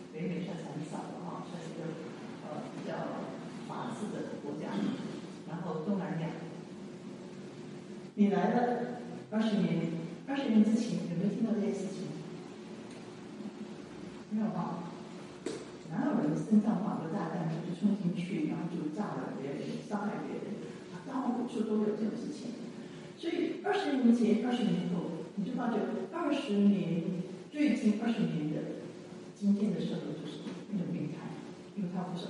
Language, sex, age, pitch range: English, female, 40-59, 180-220 Hz